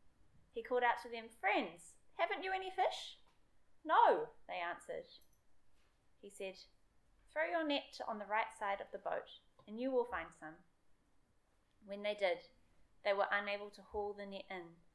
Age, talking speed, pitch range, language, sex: 20-39, 165 wpm, 185-225 Hz, English, female